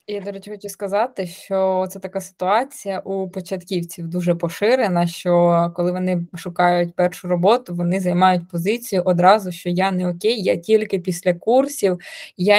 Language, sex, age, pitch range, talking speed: Ukrainian, female, 20-39, 180-220 Hz, 155 wpm